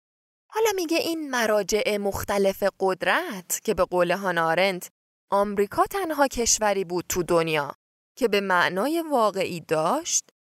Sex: female